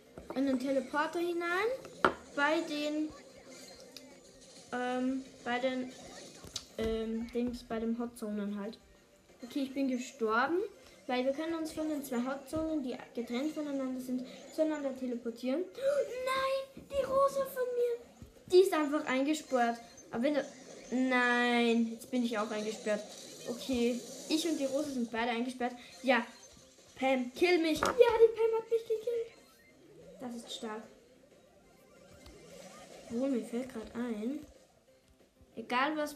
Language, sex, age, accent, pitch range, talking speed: German, female, 20-39, German, 240-280 Hz, 135 wpm